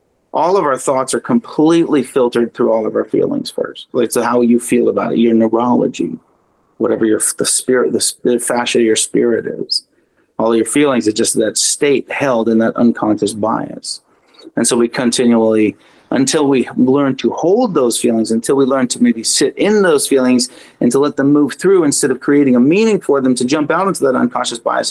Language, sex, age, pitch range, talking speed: English, male, 30-49, 120-160 Hz, 200 wpm